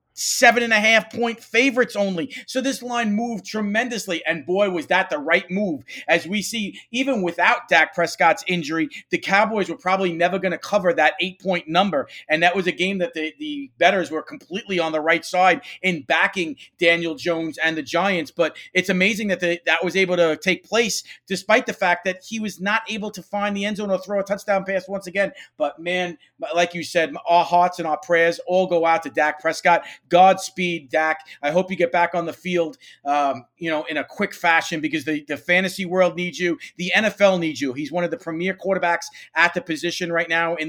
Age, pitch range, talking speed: 40-59, 165-200 Hz, 210 wpm